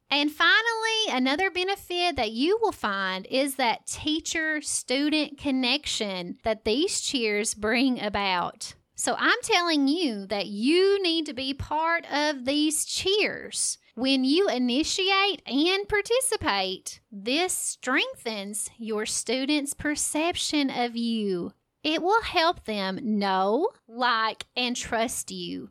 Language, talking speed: English, 120 wpm